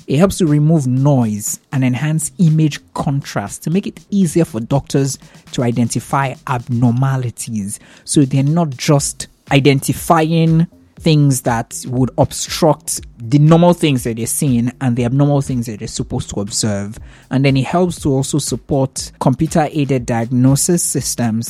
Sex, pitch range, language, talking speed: male, 115-150 Hz, English, 145 wpm